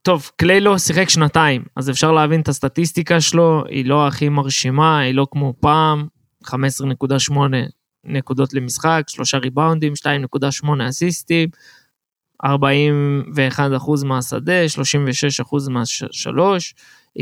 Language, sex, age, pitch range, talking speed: Hebrew, male, 20-39, 135-160 Hz, 105 wpm